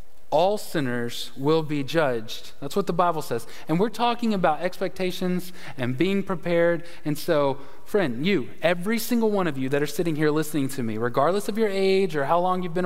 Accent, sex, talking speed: American, male, 200 wpm